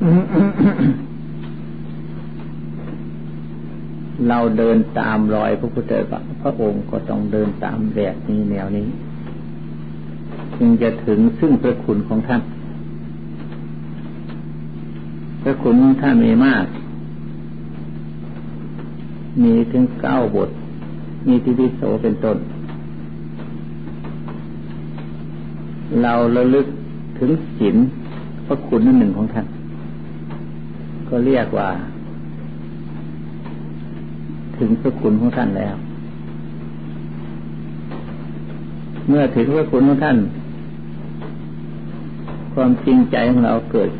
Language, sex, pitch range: Thai, male, 75-105 Hz